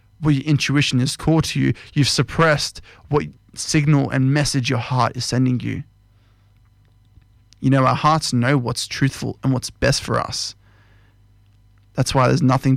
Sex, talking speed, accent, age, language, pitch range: male, 160 wpm, Australian, 20-39, English, 105-130 Hz